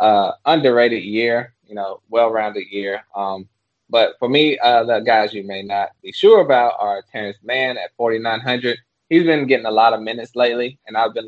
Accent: American